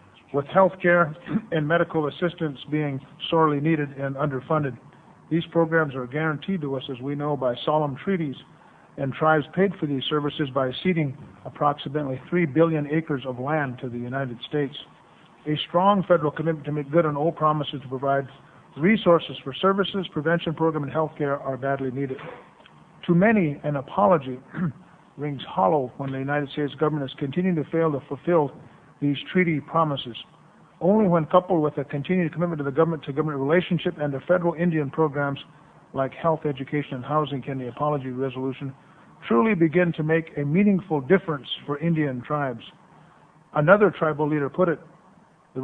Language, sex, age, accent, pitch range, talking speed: English, male, 50-69, American, 140-170 Hz, 165 wpm